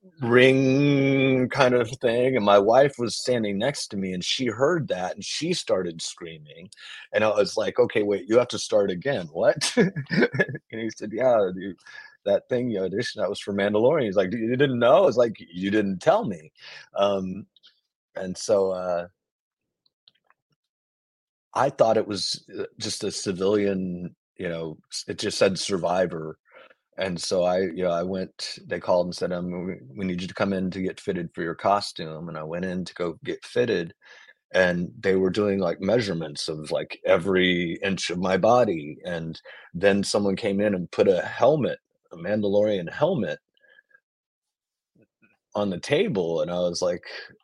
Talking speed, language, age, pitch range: 175 wpm, English, 30-49, 90-125 Hz